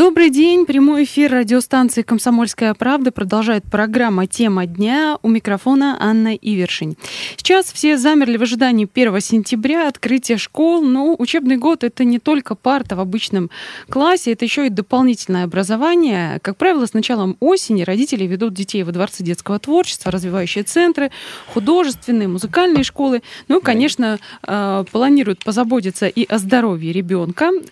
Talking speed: 140 wpm